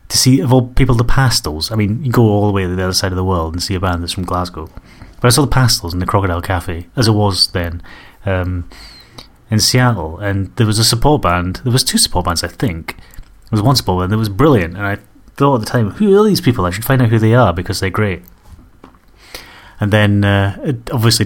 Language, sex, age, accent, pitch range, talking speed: English, male, 30-49, British, 95-120 Hz, 250 wpm